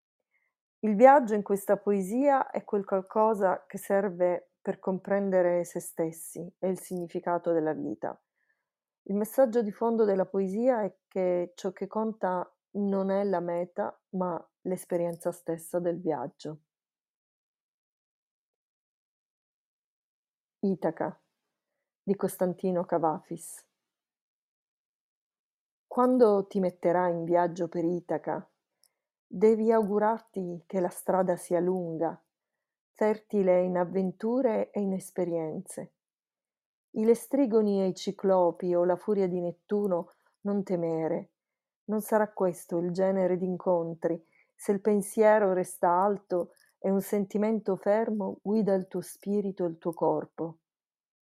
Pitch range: 175-205 Hz